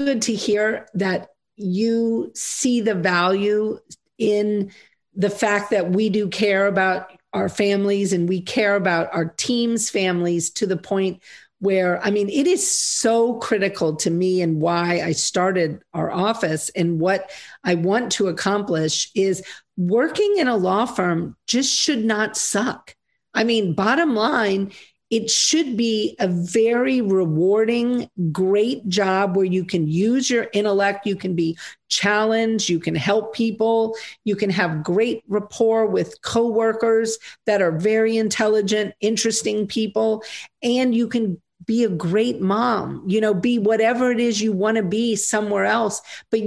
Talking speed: 150 wpm